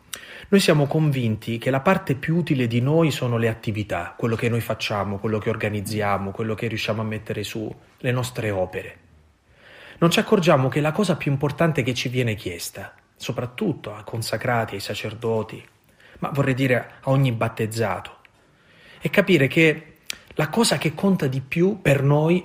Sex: male